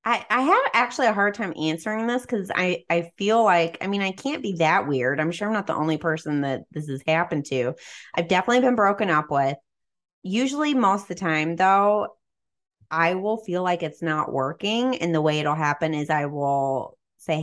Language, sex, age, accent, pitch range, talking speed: English, female, 20-39, American, 140-190 Hz, 210 wpm